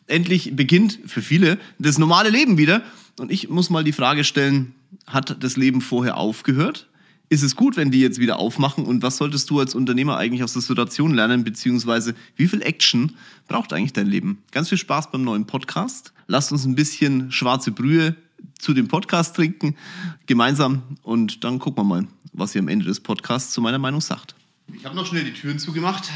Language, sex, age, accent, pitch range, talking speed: German, male, 30-49, German, 120-155 Hz, 195 wpm